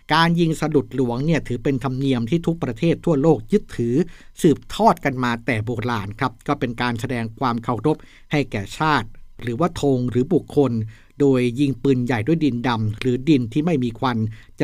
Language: Thai